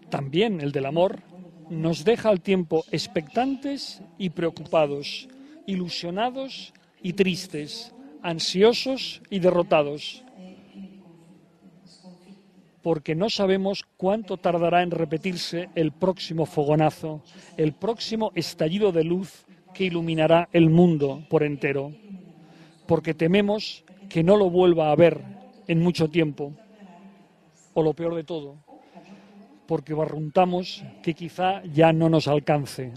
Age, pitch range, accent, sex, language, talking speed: 40-59, 165-200 Hz, Spanish, male, Italian, 115 wpm